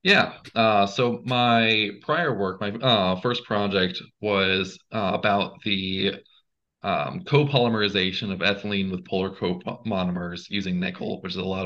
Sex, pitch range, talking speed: male, 95-115 Hz, 140 wpm